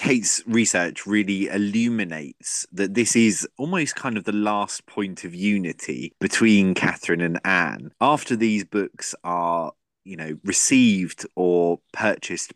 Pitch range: 85-110 Hz